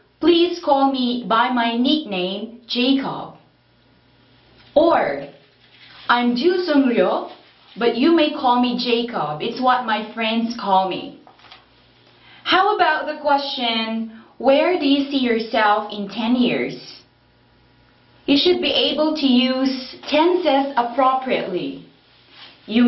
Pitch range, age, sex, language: 205-265 Hz, 20-39, female, Korean